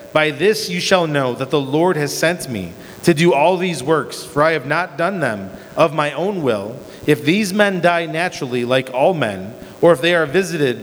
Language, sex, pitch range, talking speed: English, male, 145-175 Hz, 215 wpm